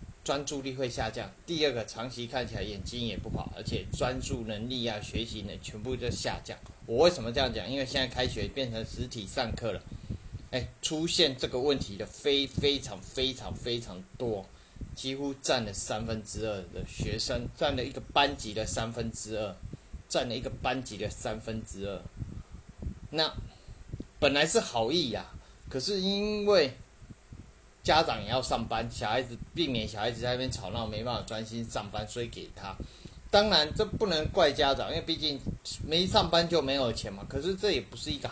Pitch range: 110-140 Hz